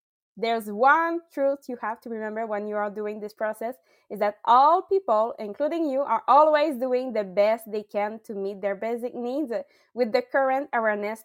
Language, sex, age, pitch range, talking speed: English, female, 20-39, 220-285 Hz, 185 wpm